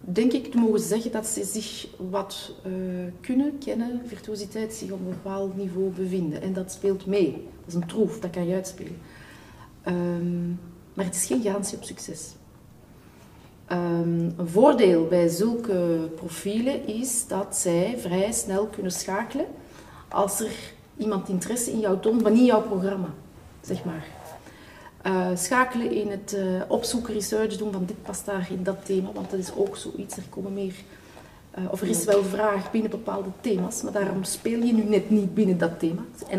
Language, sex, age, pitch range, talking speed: Dutch, female, 40-59, 185-225 Hz, 180 wpm